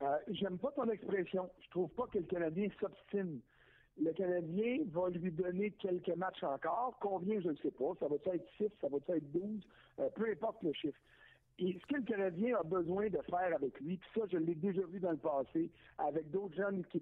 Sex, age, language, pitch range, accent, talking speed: male, 60-79, French, 175-220 Hz, French, 220 wpm